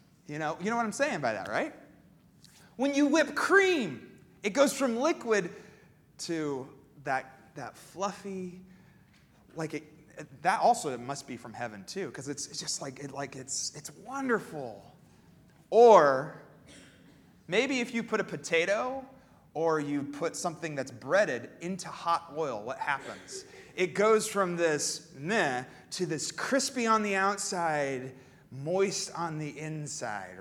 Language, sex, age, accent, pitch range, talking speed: English, male, 30-49, American, 155-230 Hz, 145 wpm